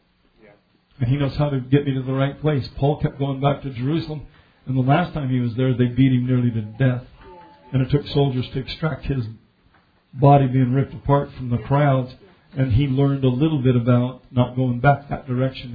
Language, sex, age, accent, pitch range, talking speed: English, male, 50-69, American, 125-140 Hz, 215 wpm